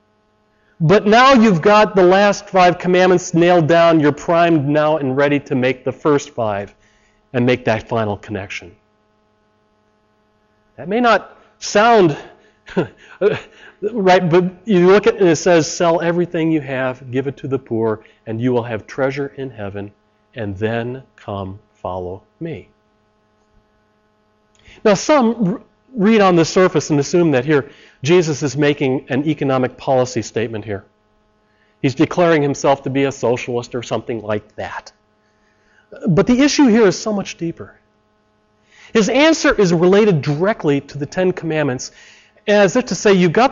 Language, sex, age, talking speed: English, male, 40-59, 155 wpm